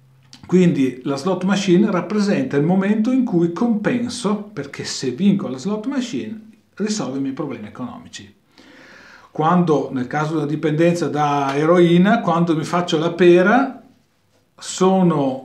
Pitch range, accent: 135-210 Hz, native